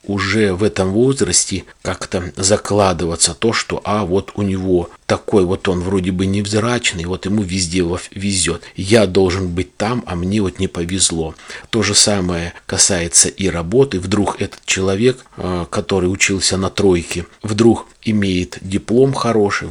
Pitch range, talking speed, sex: 90-105 Hz, 145 wpm, male